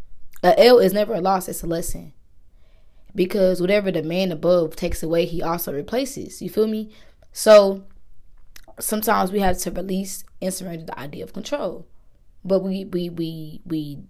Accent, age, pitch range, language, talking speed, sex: American, 20-39, 175-230 Hz, English, 165 wpm, female